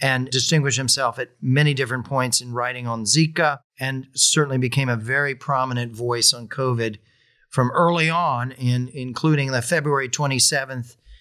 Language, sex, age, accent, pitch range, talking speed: English, male, 40-59, American, 125-170 Hz, 145 wpm